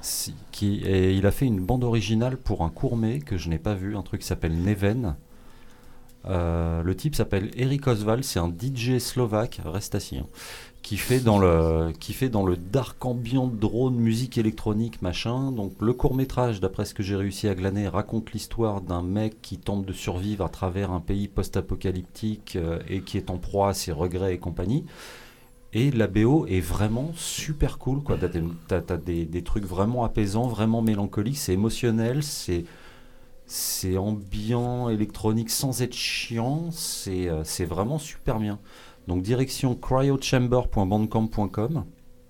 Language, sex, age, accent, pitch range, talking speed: French, male, 30-49, French, 95-125 Hz, 165 wpm